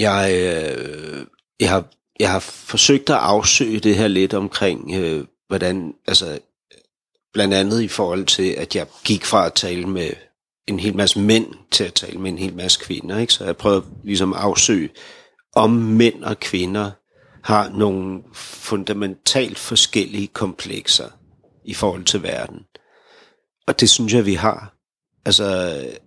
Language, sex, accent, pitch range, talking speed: Danish, male, native, 95-120 Hz, 150 wpm